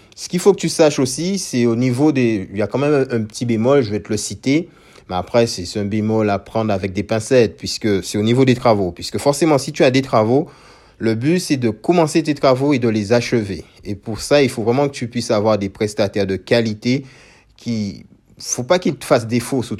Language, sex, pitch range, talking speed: French, male, 110-145 Hz, 245 wpm